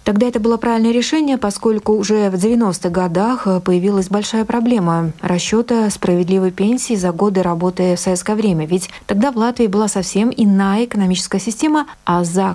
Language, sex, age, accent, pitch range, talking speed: Russian, female, 30-49, native, 185-230 Hz, 160 wpm